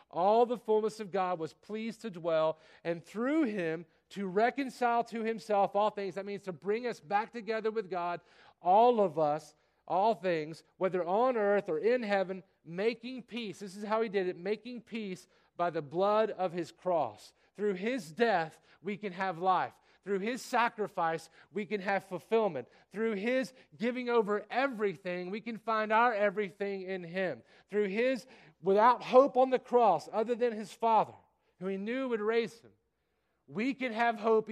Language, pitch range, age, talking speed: English, 160-220 Hz, 40-59, 175 wpm